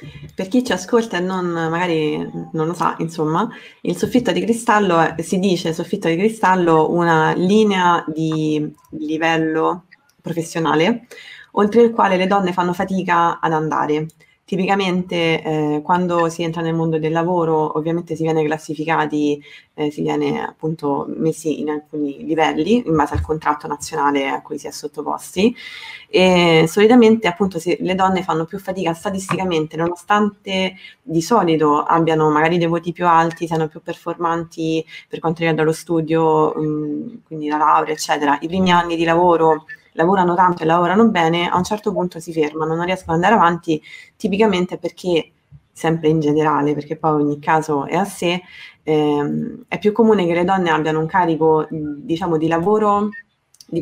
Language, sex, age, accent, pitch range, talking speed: Italian, female, 20-39, native, 155-180 Hz, 160 wpm